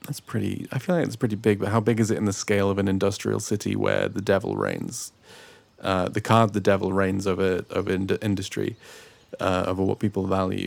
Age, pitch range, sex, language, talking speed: 30-49, 100-120 Hz, male, English, 220 wpm